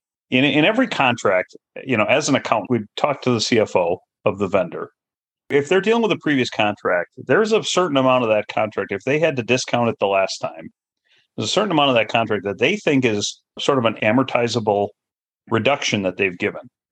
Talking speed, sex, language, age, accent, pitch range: 210 wpm, male, English, 40-59, American, 100-130 Hz